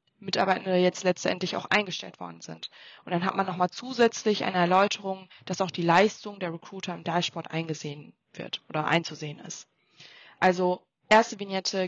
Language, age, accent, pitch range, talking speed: German, 20-39, German, 170-205 Hz, 155 wpm